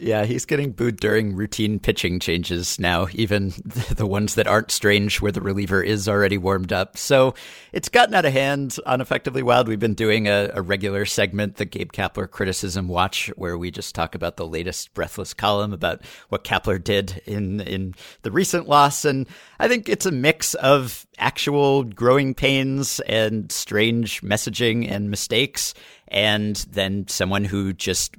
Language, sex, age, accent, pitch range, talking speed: English, male, 50-69, American, 95-125 Hz, 170 wpm